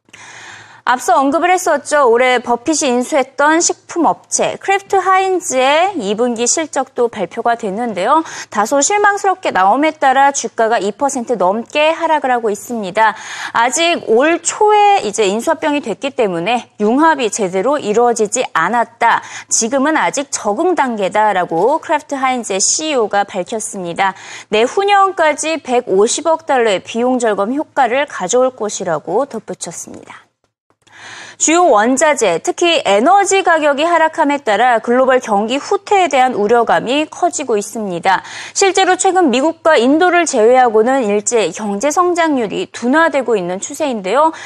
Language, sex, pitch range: Korean, female, 225-325 Hz